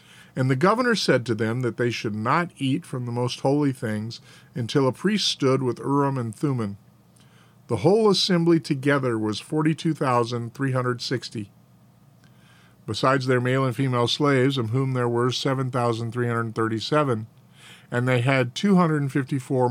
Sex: male